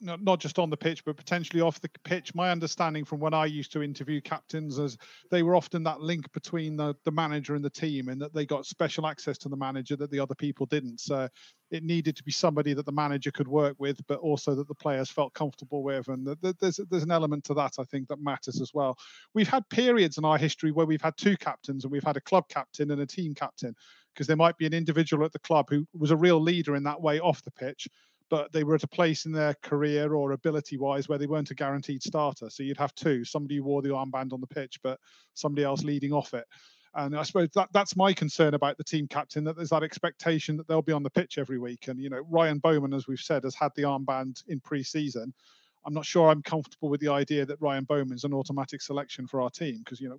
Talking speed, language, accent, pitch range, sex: 255 wpm, English, British, 140-160 Hz, male